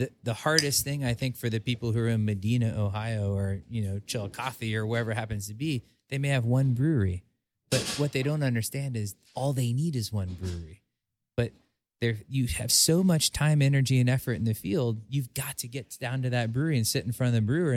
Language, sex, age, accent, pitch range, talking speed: English, male, 30-49, American, 105-130 Hz, 235 wpm